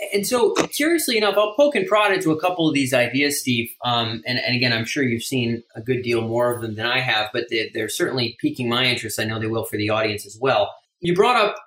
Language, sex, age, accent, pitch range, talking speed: English, male, 30-49, American, 120-155 Hz, 260 wpm